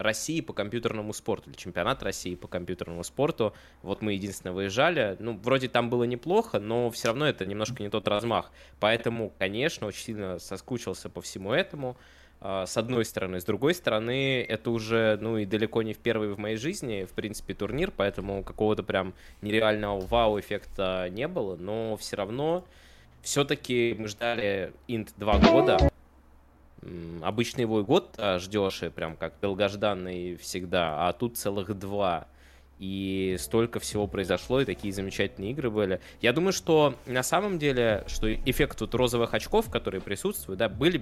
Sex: male